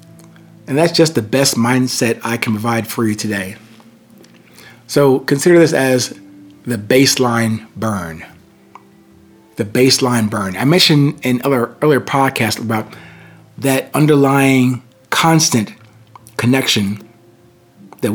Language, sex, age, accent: English, male, 40-59, American